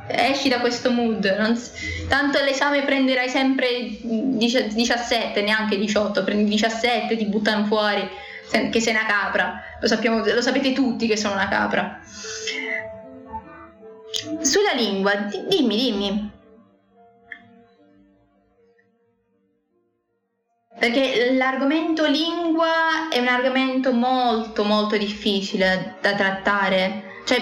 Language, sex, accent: Italian, female, native